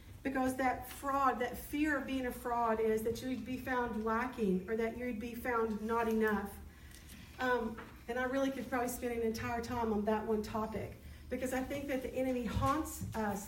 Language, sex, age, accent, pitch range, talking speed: English, female, 40-59, American, 225-260 Hz, 195 wpm